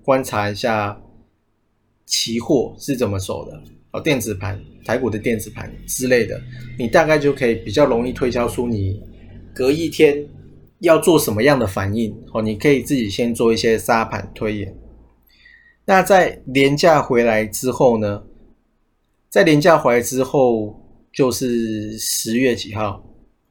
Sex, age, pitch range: male, 20-39, 105-130 Hz